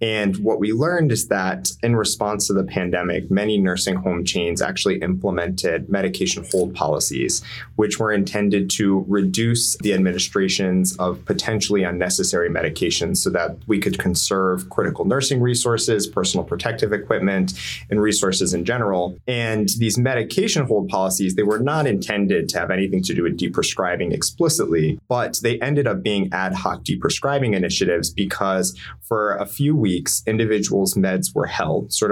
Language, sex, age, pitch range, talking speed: English, male, 20-39, 95-110 Hz, 155 wpm